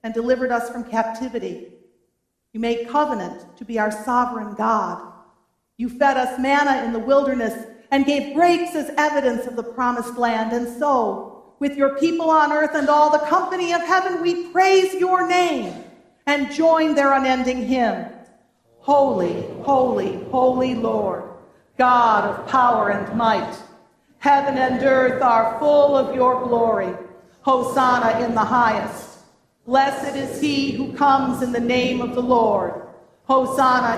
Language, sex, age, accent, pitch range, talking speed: English, female, 40-59, American, 235-275 Hz, 150 wpm